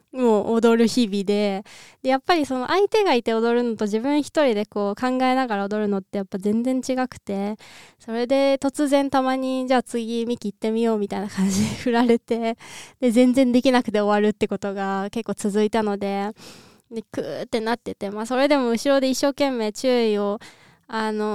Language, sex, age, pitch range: Japanese, female, 20-39, 210-270 Hz